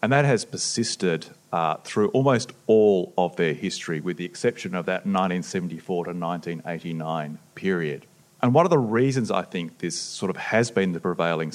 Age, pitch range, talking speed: 30-49, 85-120 Hz, 175 wpm